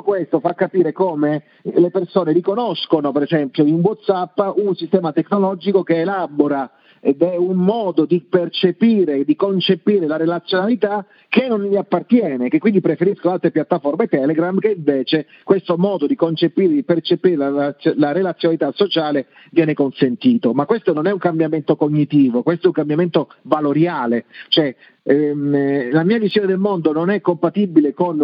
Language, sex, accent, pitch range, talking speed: Italian, male, native, 150-185 Hz, 155 wpm